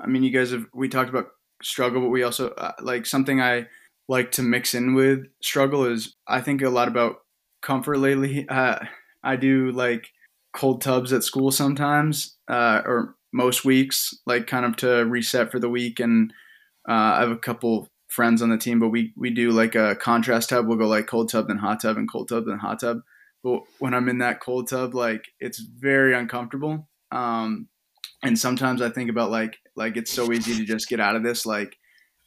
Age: 20-39